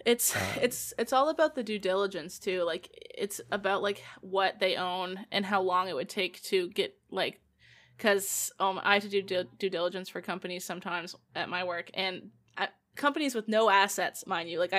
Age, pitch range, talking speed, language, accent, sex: 20-39, 185-210 Hz, 190 wpm, English, American, female